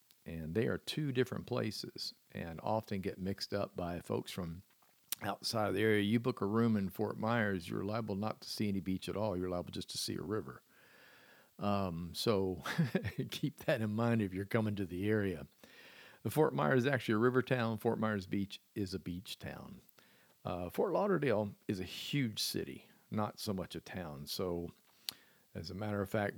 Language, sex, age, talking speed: English, male, 50-69, 195 wpm